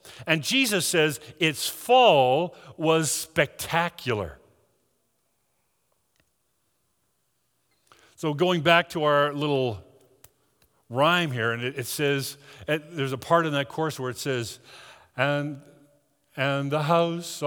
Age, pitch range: 50-69, 135-185 Hz